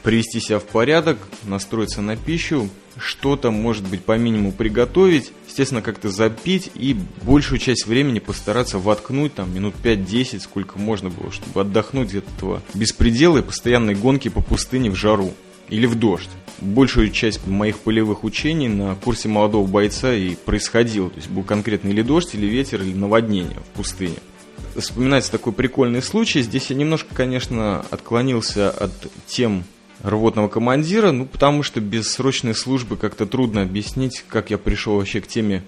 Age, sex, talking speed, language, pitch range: 20-39, male, 160 wpm, Russian, 100-125 Hz